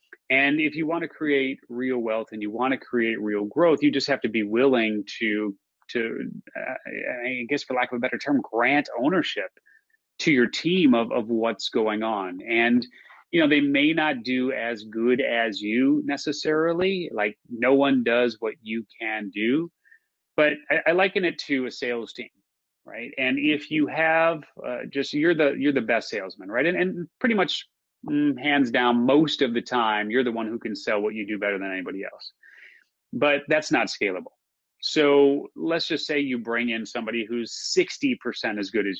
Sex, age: male, 30-49